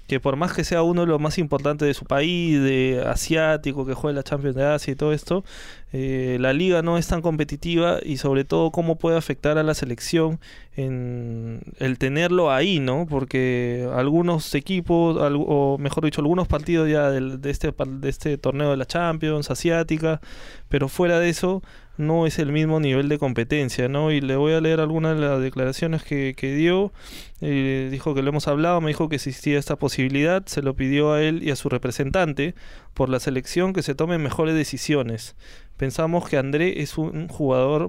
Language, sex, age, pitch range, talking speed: Spanish, male, 20-39, 135-165 Hz, 195 wpm